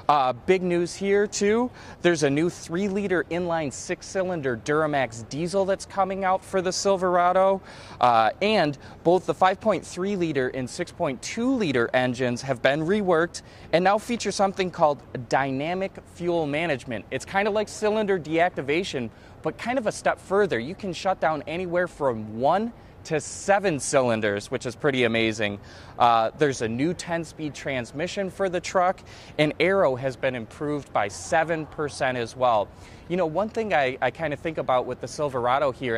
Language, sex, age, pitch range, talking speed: English, male, 20-39, 130-190 Hz, 165 wpm